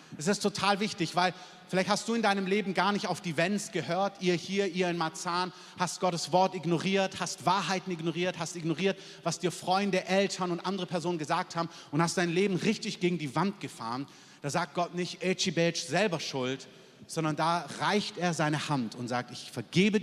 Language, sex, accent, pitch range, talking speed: German, male, German, 145-185 Hz, 200 wpm